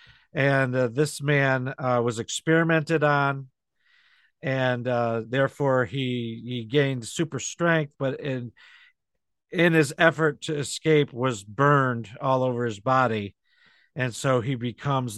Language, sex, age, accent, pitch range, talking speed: English, male, 50-69, American, 125-155 Hz, 130 wpm